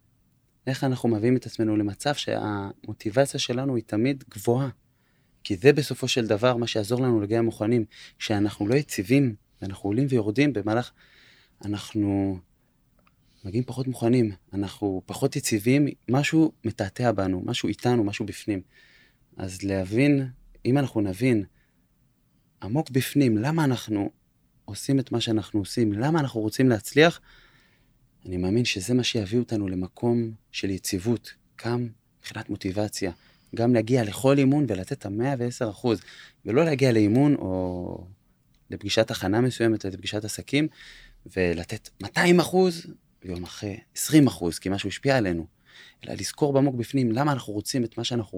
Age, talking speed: 20-39, 140 wpm